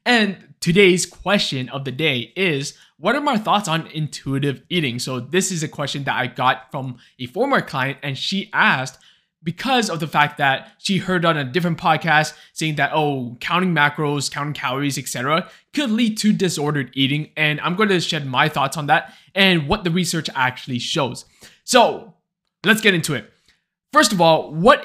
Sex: male